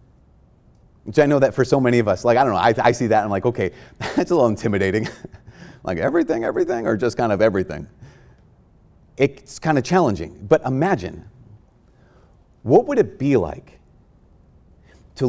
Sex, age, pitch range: male, 30-49, 115-170 Hz